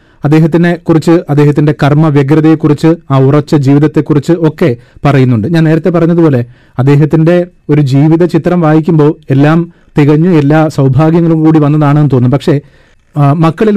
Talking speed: 120 wpm